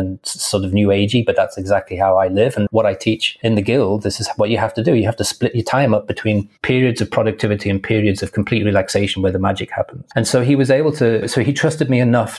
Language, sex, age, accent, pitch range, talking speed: English, male, 30-49, British, 100-115 Hz, 270 wpm